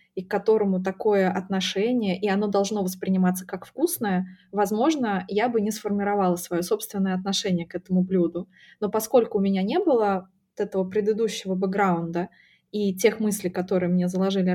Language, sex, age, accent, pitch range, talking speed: Russian, female, 20-39, native, 185-220 Hz, 155 wpm